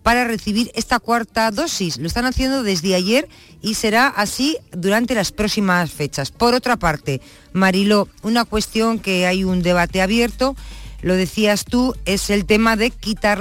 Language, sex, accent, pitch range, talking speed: Spanish, female, Spanish, 180-230 Hz, 160 wpm